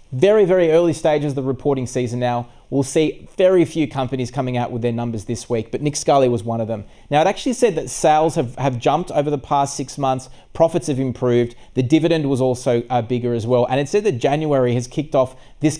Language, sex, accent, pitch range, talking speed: English, male, Australian, 125-155 Hz, 235 wpm